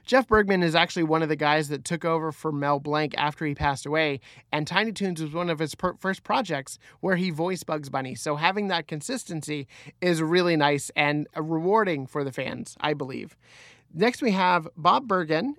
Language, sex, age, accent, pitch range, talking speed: English, male, 30-49, American, 150-185 Hz, 195 wpm